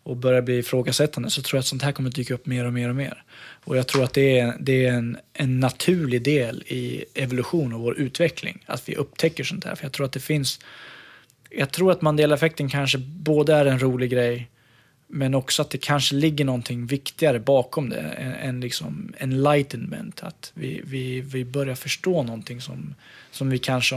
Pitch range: 125-155 Hz